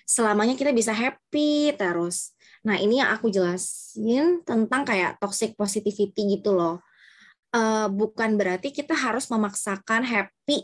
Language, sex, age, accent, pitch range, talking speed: Indonesian, female, 20-39, native, 195-245 Hz, 130 wpm